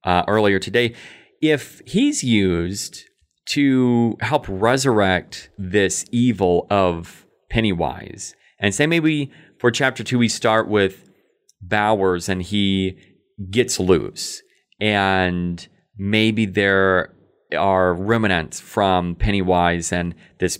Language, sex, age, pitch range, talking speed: English, male, 30-49, 90-110 Hz, 105 wpm